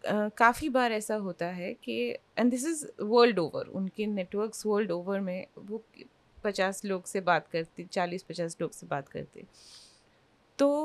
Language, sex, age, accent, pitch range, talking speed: Hindi, female, 30-49, native, 180-230 Hz, 165 wpm